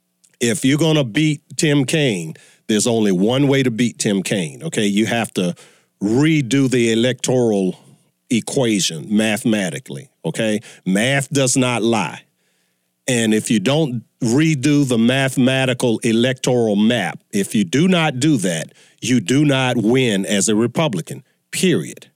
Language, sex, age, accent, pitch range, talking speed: English, male, 40-59, American, 125-155 Hz, 140 wpm